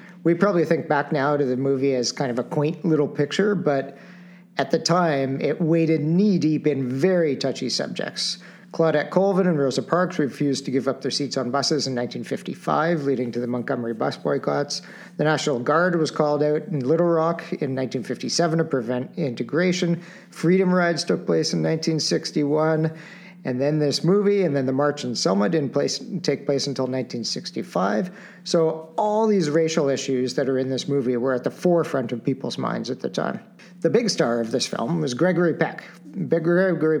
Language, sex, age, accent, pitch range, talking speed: English, male, 50-69, American, 135-175 Hz, 180 wpm